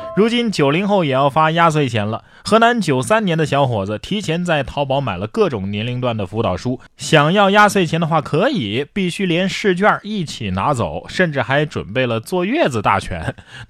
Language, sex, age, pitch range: Chinese, male, 20-39, 110-160 Hz